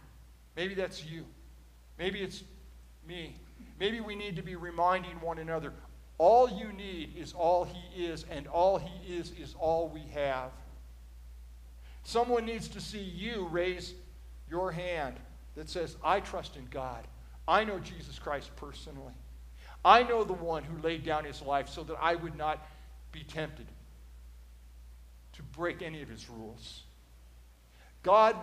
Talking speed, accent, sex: 150 wpm, American, male